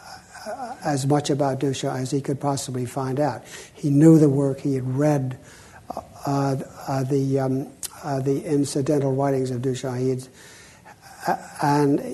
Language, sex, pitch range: English, male, 135-150 Hz